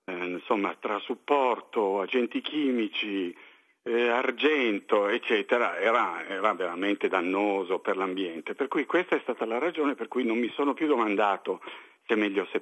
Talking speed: 155 wpm